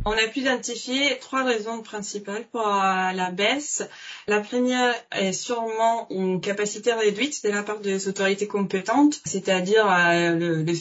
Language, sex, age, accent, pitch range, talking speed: French, female, 20-39, French, 175-225 Hz, 140 wpm